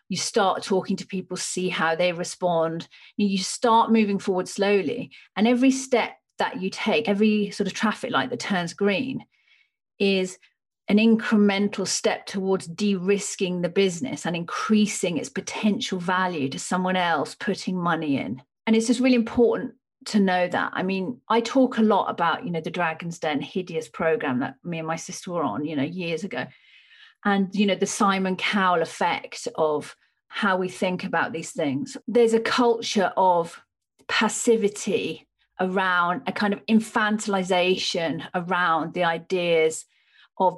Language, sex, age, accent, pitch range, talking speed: English, female, 40-59, British, 175-215 Hz, 160 wpm